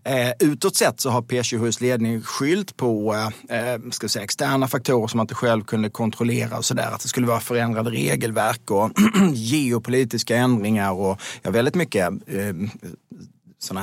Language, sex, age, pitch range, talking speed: Swedish, male, 30-49, 100-120 Hz, 175 wpm